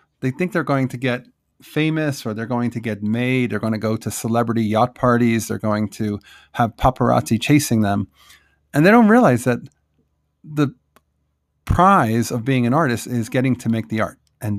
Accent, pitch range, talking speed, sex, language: American, 110-140 Hz, 190 wpm, male, English